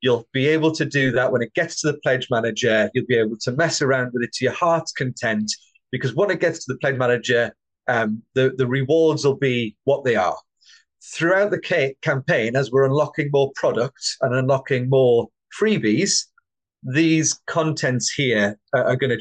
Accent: British